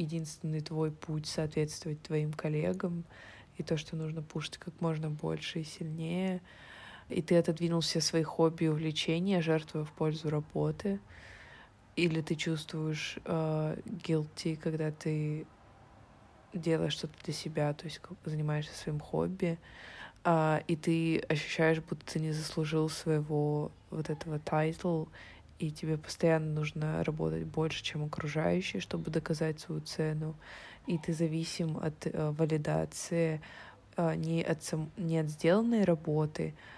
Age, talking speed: 20-39, 130 wpm